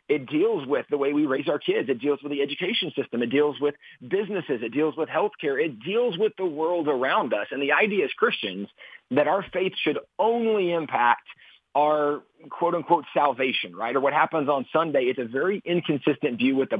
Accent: American